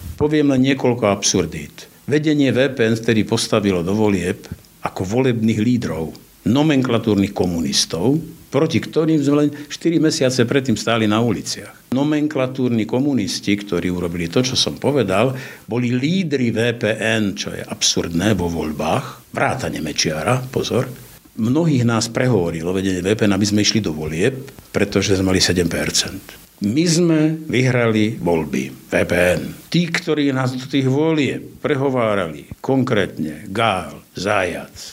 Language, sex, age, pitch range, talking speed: Slovak, male, 60-79, 100-145 Hz, 125 wpm